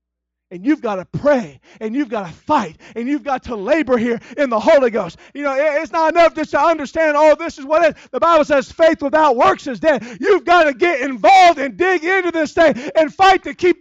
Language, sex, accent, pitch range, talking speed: English, male, American, 230-330 Hz, 245 wpm